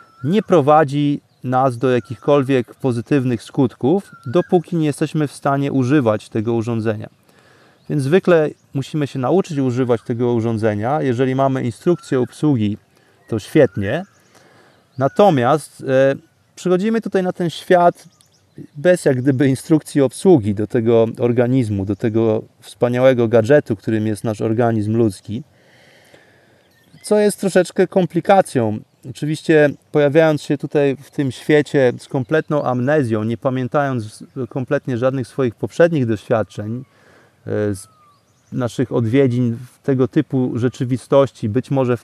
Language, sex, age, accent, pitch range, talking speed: Polish, male, 30-49, native, 115-145 Hz, 115 wpm